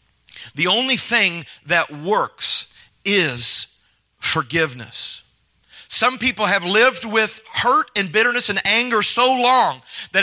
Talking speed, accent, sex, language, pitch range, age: 115 wpm, American, male, English, 135-200 Hz, 40-59